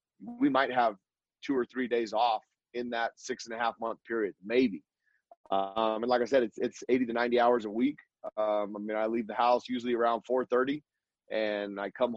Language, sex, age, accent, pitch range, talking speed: English, male, 30-49, American, 115-125 Hz, 215 wpm